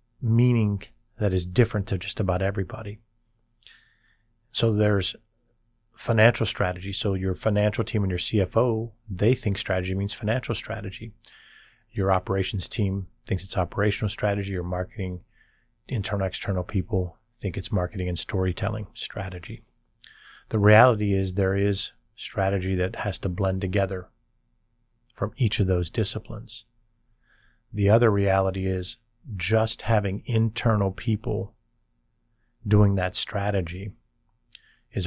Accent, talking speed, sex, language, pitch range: American, 120 wpm, male, English, 95-115 Hz